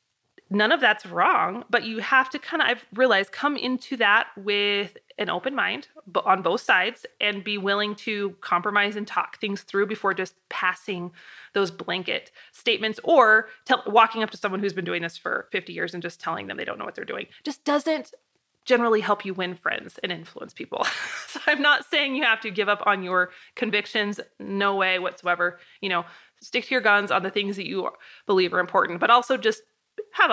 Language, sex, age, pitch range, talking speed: English, female, 20-39, 195-255 Hz, 210 wpm